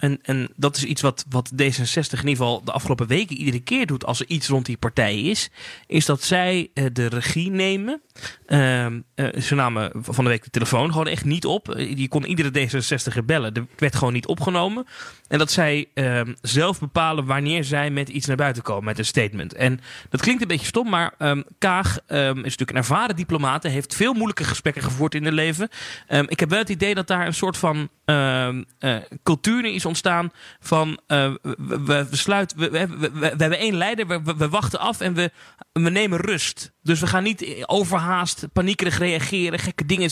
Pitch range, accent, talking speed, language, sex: 135-180 Hz, Dutch, 210 wpm, Dutch, male